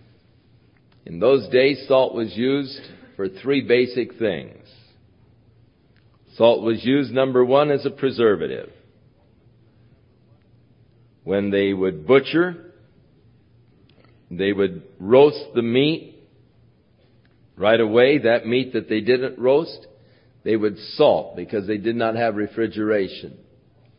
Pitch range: 110-130 Hz